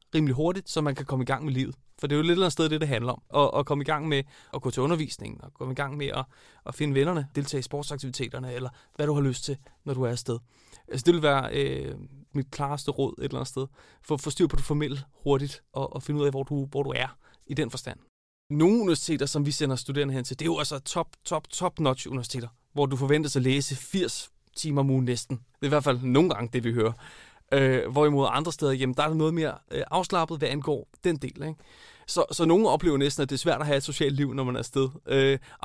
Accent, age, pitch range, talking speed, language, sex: native, 30-49, 130-155 Hz, 265 wpm, Danish, male